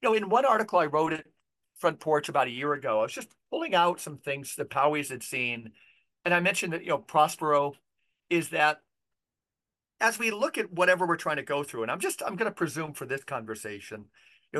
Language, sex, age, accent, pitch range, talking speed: English, male, 50-69, American, 140-180 Hz, 225 wpm